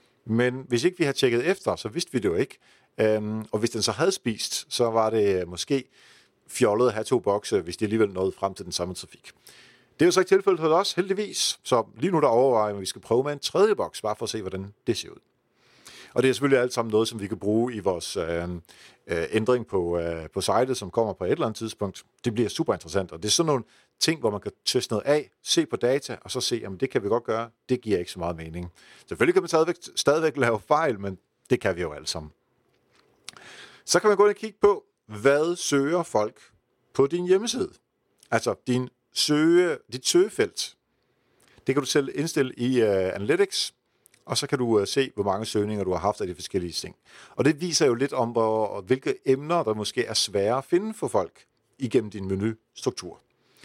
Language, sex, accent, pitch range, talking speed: Danish, male, native, 105-150 Hz, 225 wpm